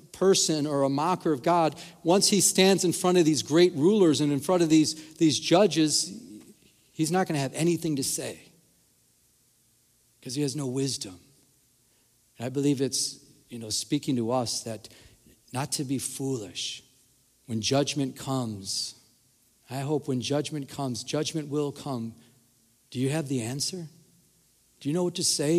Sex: male